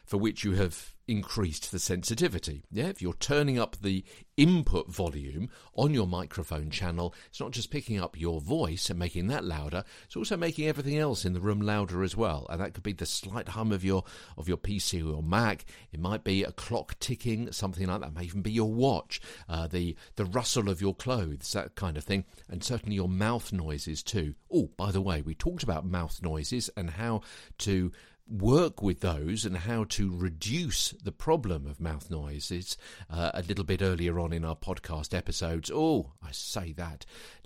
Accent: British